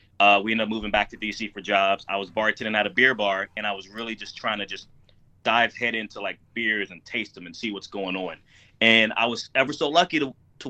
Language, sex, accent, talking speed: English, male, American, 260 wpm